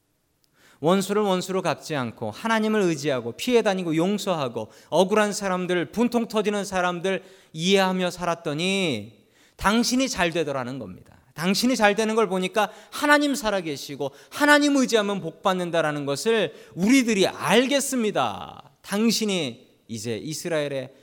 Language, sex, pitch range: Korean, male, 135-210 Hz